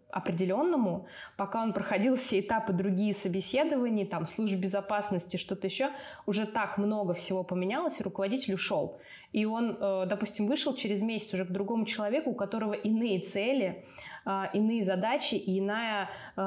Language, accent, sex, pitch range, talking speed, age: Russian, native, female, 190-220 Hz, 140 wpm, 20-39